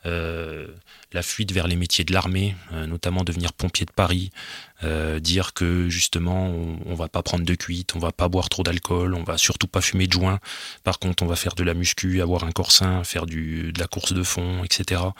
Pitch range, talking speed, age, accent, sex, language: 90-100 Hz, 235 wpm, 30-49, French, male, French